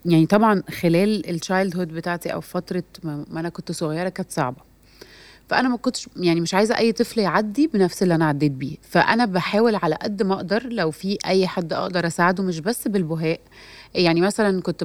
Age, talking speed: 30-49, 180 wpm